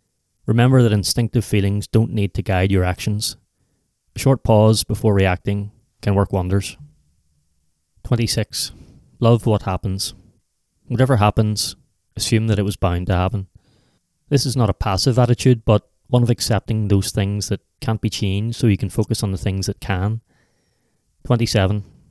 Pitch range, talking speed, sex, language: 95-115 Hz, 155 wpm, male, English